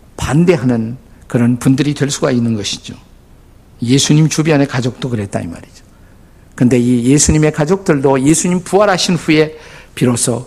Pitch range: 120-160 Hz